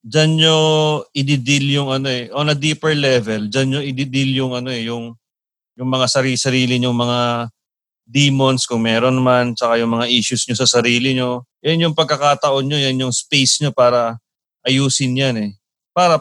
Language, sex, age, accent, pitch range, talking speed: English, male, 30-49, Filipino, 120-155 Hz, 175 wpm